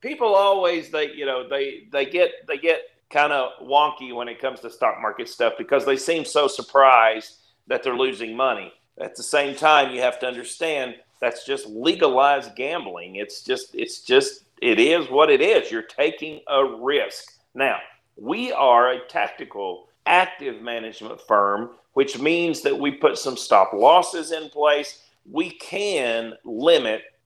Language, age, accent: English, 50-69, American